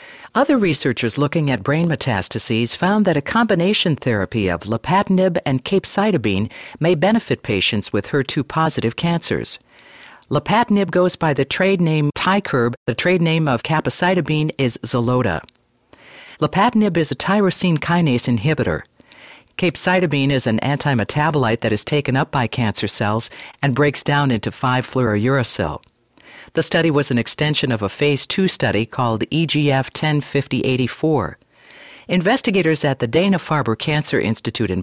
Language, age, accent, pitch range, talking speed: English, 50-69, American, 120-170 Hz, 130 wpm